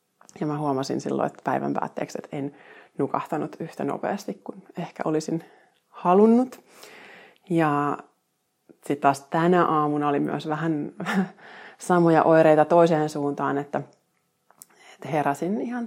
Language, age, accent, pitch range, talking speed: Finnish, 30-49, native, 145-185 Hz, 120 wpm